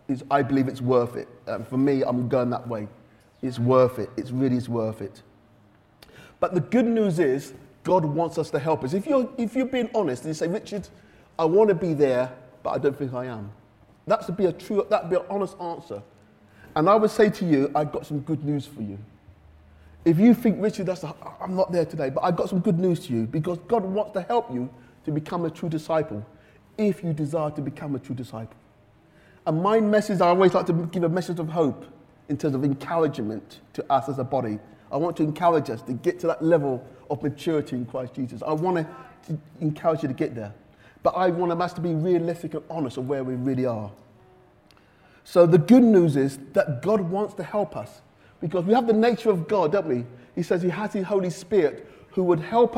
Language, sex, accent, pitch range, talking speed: English, male, British, 130-185 Hz, 225 wpm